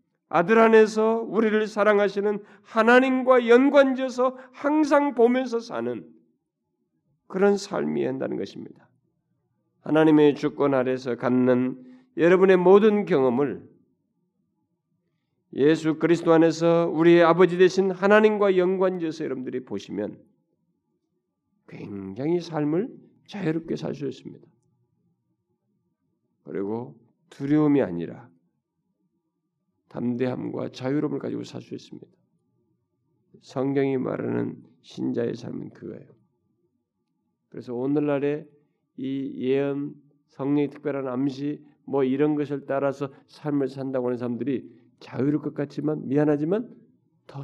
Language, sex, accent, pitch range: Korean, male, native, 140-200 Hz